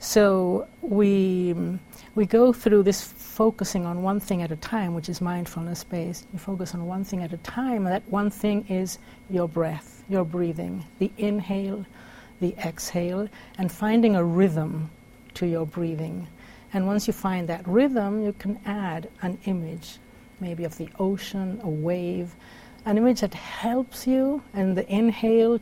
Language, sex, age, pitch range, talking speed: English, female, 60-79, 175-220 Hz, 160 wpm